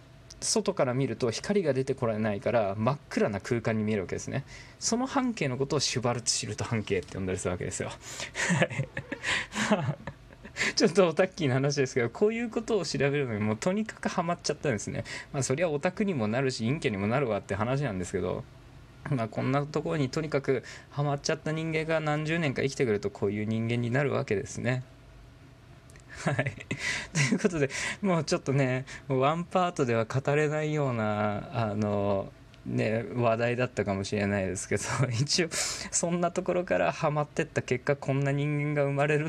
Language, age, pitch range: Japanese, 20-39, 115-150 Hz